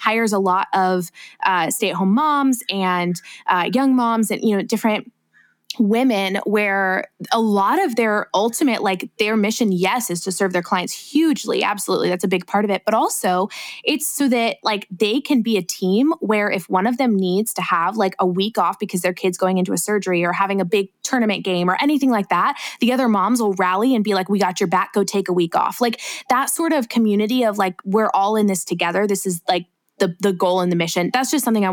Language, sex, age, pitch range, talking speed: English, female, 20-39, 185-230 Hz, 230 wpm